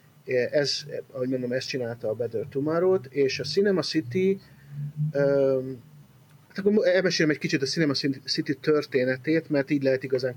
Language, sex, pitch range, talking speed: Hungarian, male, 135-165 Hz, 145 wpm